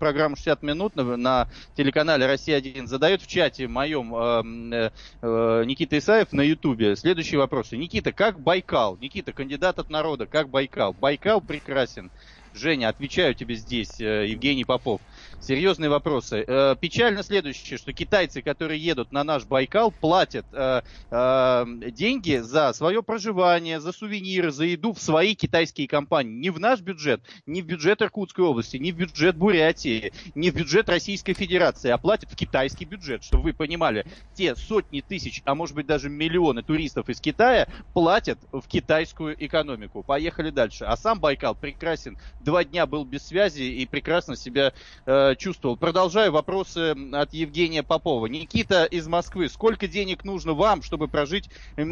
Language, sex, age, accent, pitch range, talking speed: Russian, male, 20-39, native, 135-180 Hz, 150 wpm